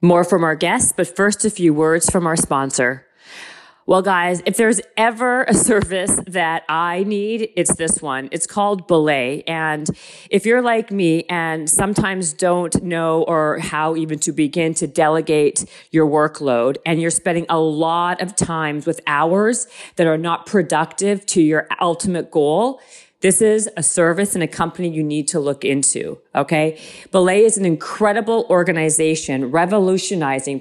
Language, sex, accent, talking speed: English, female, American, 160 wpm